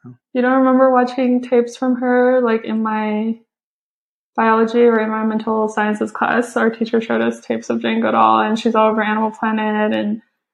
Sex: female